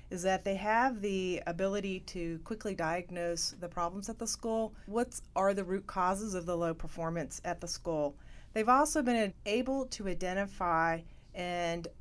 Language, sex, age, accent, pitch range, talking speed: English, female, 40-59, American, 170-215 Hz, 165 wpm